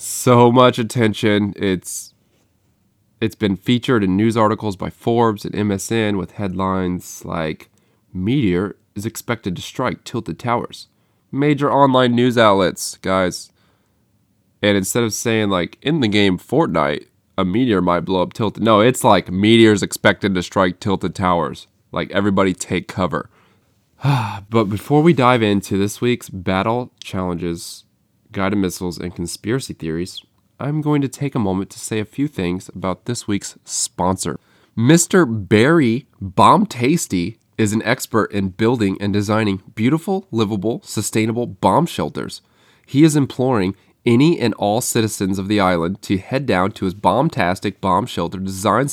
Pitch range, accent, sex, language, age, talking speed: 95-115 Hz, American, male, English, 20-39, 150 wpm